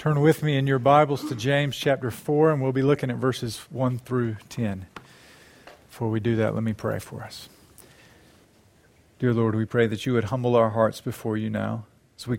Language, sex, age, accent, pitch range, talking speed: English, male, 40-59, American, 110-135 Hz, 210 wpm